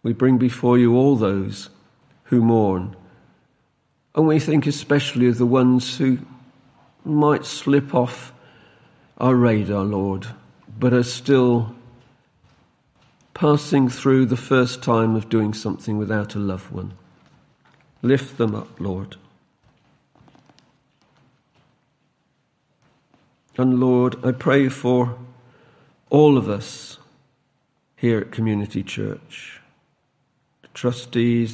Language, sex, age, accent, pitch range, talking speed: English, male, 50-69, British, 110-135 Hz, 105 wpm